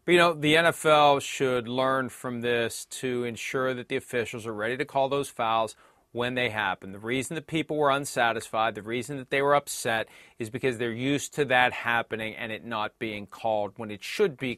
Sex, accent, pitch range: male, American, 125-155 Hz